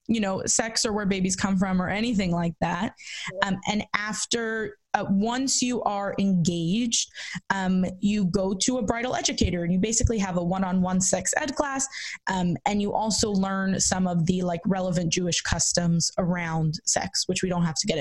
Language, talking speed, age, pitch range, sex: English, 185 wpm, 20-39, 185-225 Hz, female